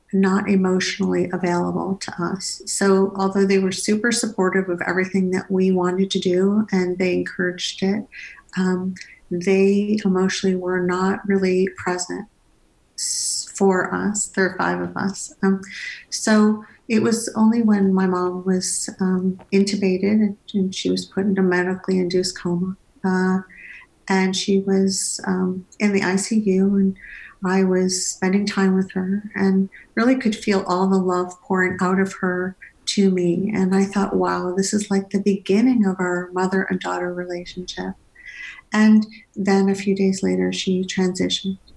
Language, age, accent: English, 50-69, American